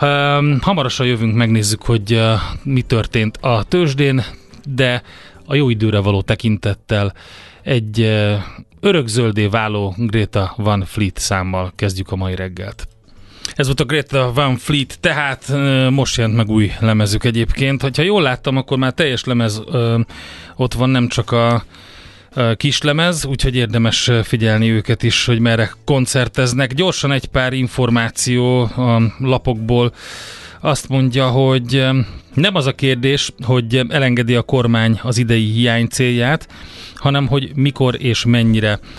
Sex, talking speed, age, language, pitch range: male, 130 wpm, 30-49, Hungarian, 110-130 Hz